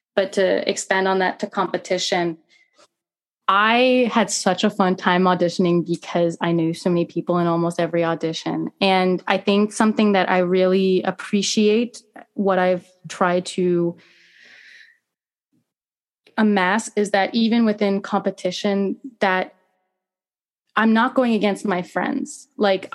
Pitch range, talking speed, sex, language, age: 180-220 Hz, 130 wpm, female, English, 20-39